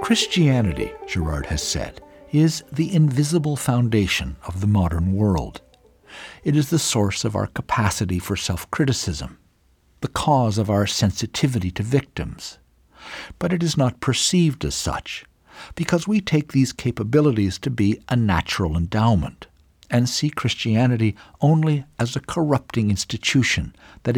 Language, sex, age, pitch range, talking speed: English, male, 60-79, 90-130 Hz, 135 wpm